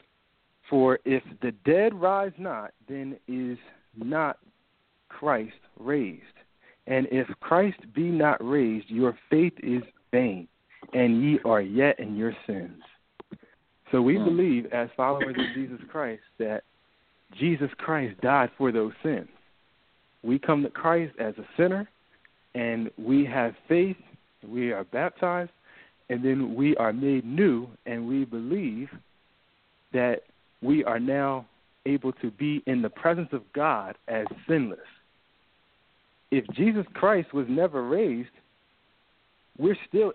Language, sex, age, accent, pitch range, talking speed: English, male, 40-59, American, 125-170 Hz, 130 wpm